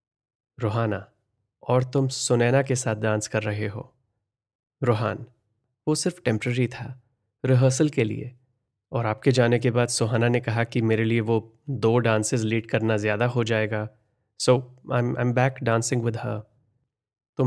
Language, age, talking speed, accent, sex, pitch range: Hindi, 30-49, 160 wpm, native, male, 110-125 Hz